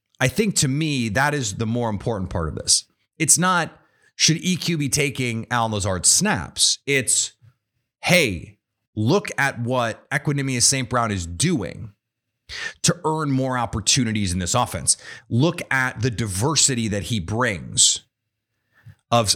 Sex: male